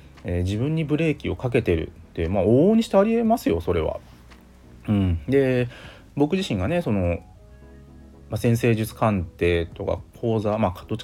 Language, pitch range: Japanese, 90-125 Hz